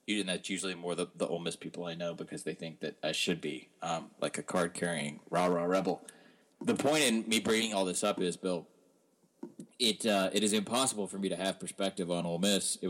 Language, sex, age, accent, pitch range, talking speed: English, male, 30-49, American, 90-100 Hz, 215 wpm